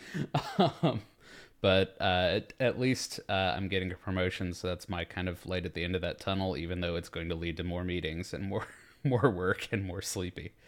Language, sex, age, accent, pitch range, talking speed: English, male, 30-49, American, 95-125 Hz, 220 wpm